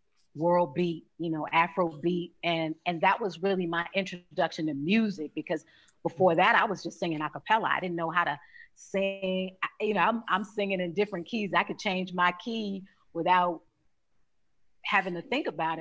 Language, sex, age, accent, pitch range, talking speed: English, female, 40-59, American, 160-190 Hz, 185 wpm